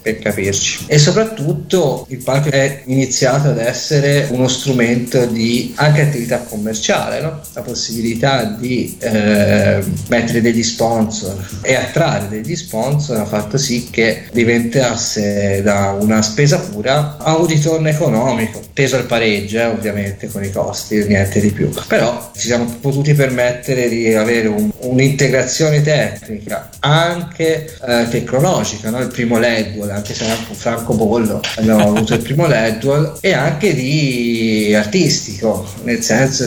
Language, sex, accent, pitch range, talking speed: Italian, male, native, 110-135 Hz, 140 wpm